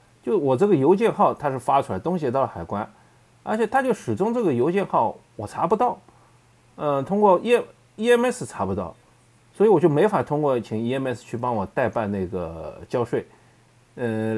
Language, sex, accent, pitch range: Chinese, male, native, 110-145 Hz